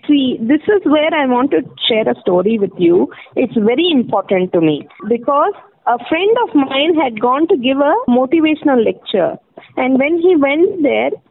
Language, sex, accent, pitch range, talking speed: English, female, Indian, 250-335 Hz, 180 wpm